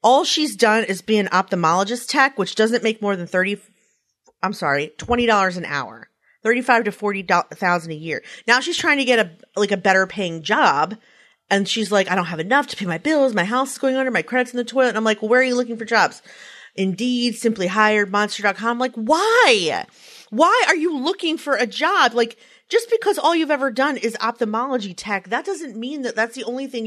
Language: English